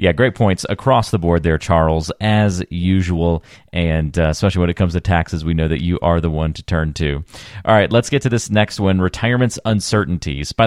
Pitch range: 85-105 Hz